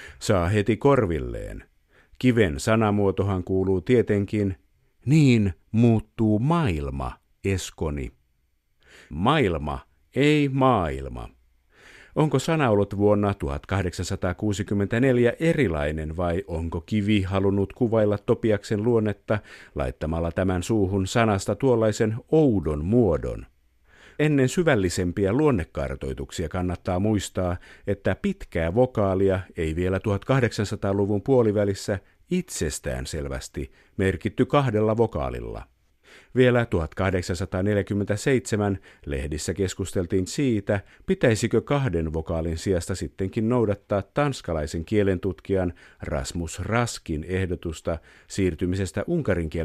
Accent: native